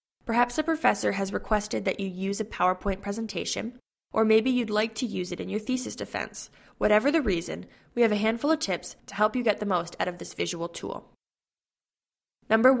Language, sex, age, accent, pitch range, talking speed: English, female, 10-29, American, 190-225 Hz, 200 wpm